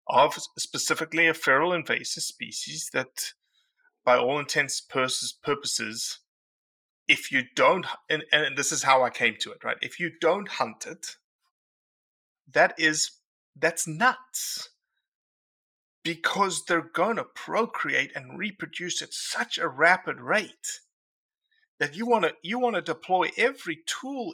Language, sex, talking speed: English, male, 135 wpm